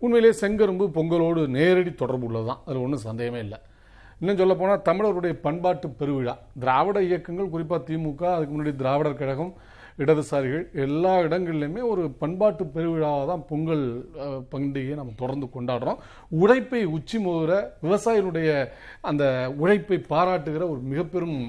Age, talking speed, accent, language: 40-59, 120 wpm, native, Tamil